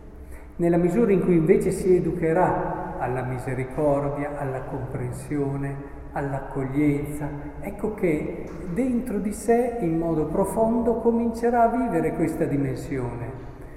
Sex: male